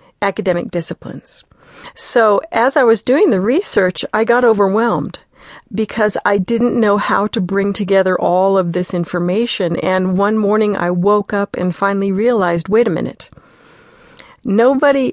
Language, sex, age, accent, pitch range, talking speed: English, female, 50-69, American, 185-230 Hz, 145 wpm